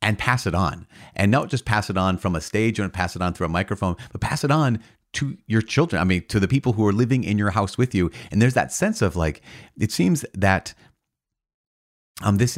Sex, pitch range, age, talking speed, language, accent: male, 85-110 Hz, 30-49, 245 wpm, English, American